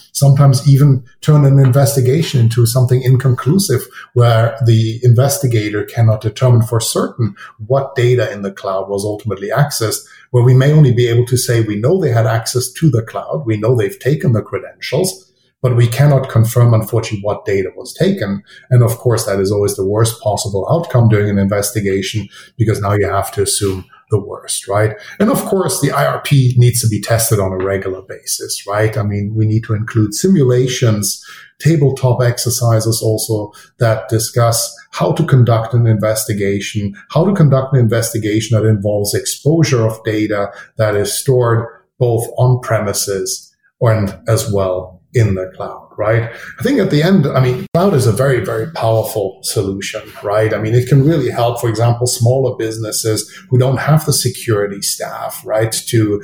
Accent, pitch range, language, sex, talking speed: German, 110-130 Hz, English, male, 175 wpm